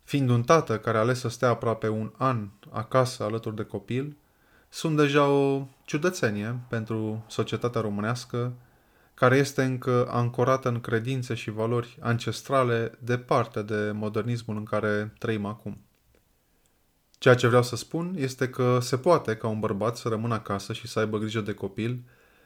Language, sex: Romanian, male